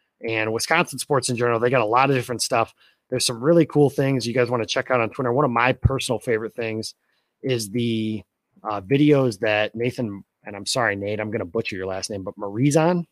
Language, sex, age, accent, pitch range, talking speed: English, male, 30-49, American, 110-135 Hz, 230 wpm